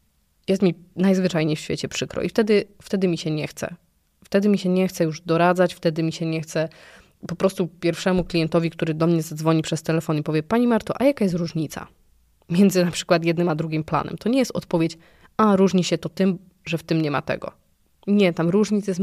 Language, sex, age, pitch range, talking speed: Polish, female, 20-39, 165-200 Hz, 220 wpm